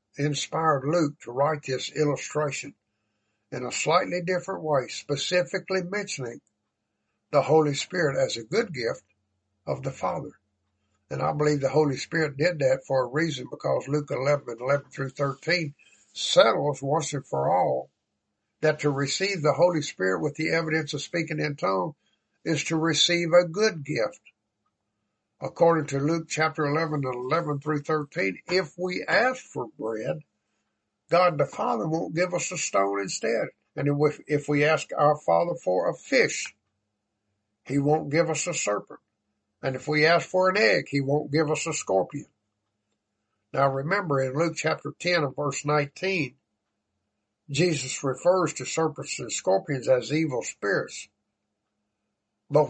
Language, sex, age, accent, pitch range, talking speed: English, male, 60-79, American, 110-160 Hz, 150 wpm